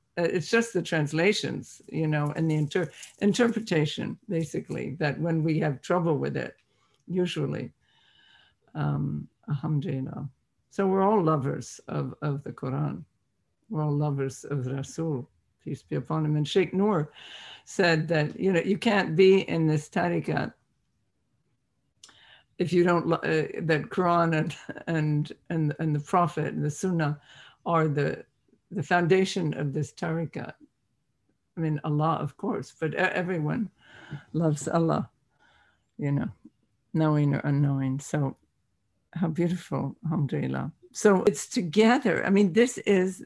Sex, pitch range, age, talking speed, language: female, 150-190 Hz, 50-69, 135 wpm, English